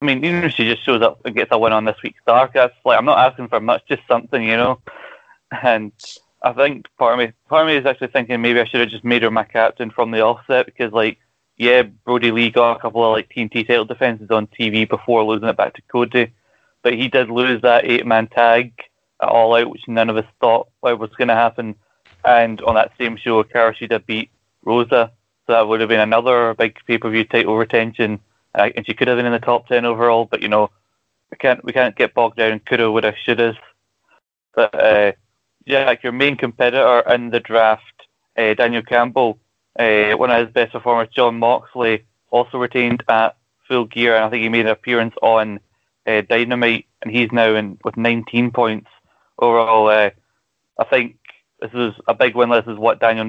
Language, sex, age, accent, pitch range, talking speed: English, male, 20-39, British, 110-120 Hz, 215 wpm